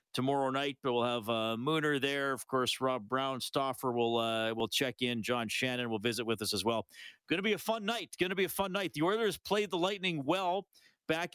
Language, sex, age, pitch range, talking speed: English, male, 40-59, 115-150 Hz, 240 wpm